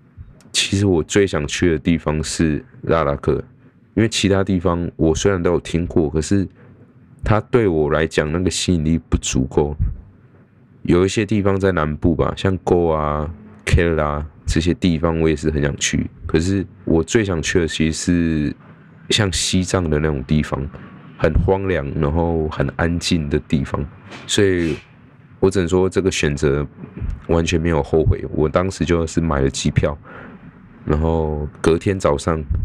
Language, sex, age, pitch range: Chinese, male, 20-39, 75-95 Hz